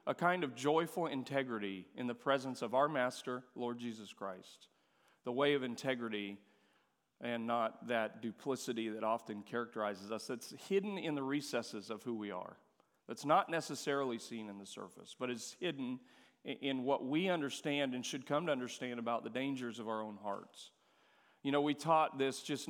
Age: 40-59